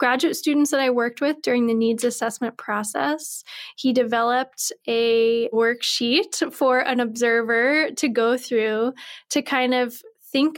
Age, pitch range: 10-29, 235-275 Hz